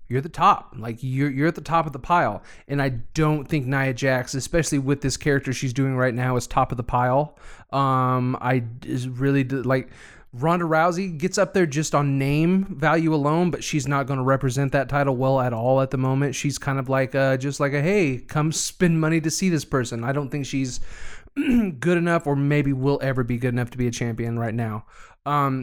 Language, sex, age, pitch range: English, male, 20-39, 125-150 Hz